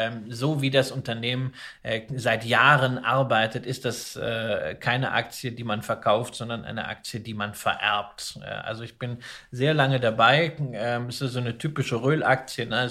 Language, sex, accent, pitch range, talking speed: German, male, German, 120-140 Hz, 155 wpm